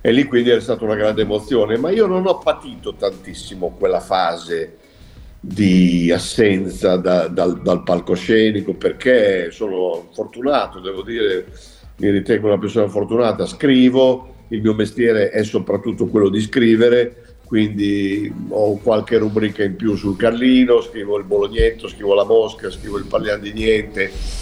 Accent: native